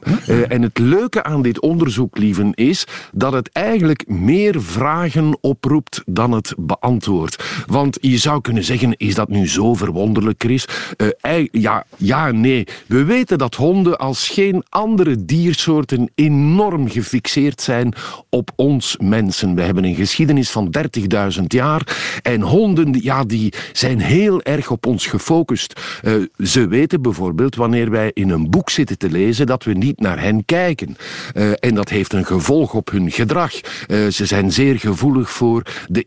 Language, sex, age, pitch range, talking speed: Dutch, male, 50-69, 105-150 Hz, 165 wpm